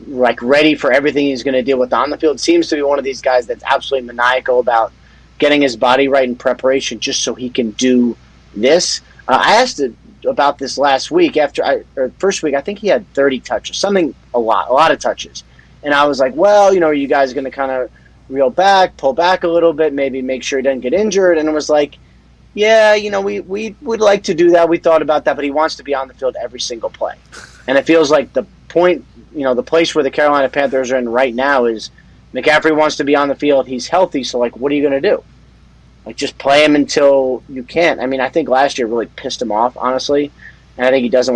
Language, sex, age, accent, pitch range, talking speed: English, male, 30-49, American, 130-160 Hz, 255 wpm